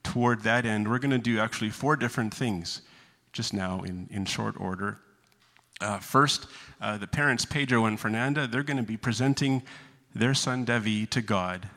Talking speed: 180 wpm